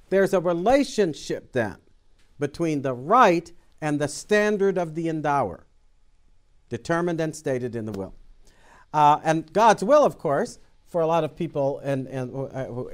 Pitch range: 135-200 Hz